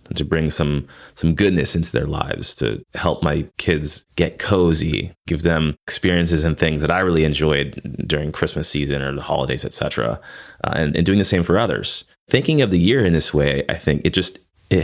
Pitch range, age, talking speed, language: 75-90 Hz, 30-49, 205 wpm, English